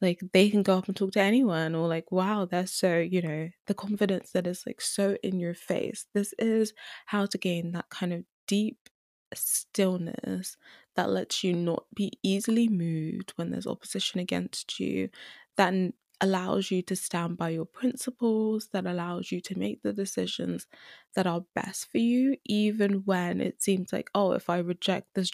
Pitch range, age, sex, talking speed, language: 175-205 Hz, 20-39, female, 180 wpm, English